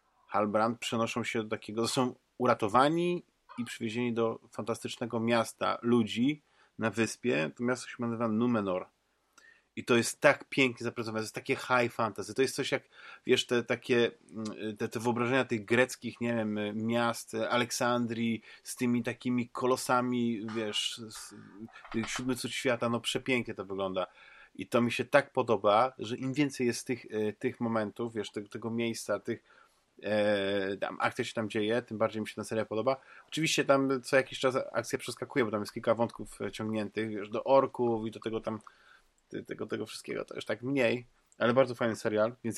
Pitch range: 110-125 Hz